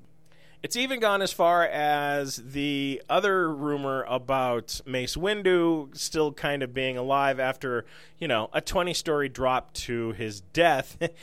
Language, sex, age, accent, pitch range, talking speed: English, male, 30-49, American, 135-180 Hz, 140 wpm